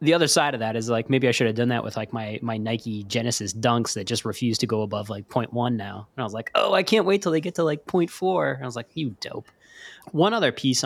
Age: 20-39